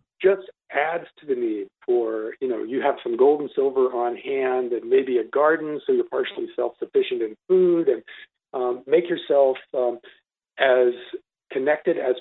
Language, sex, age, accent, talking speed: English, male, 40-59, American, 165 wpm